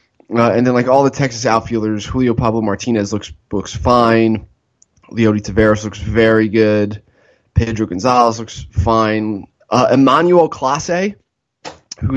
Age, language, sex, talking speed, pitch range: 20-39, English, male, 135 wpm, 110-140 Hz